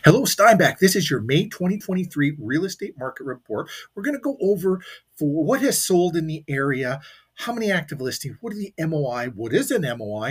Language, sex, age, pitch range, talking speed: English, male, 40-59, 135-180 Hz, 205 wpm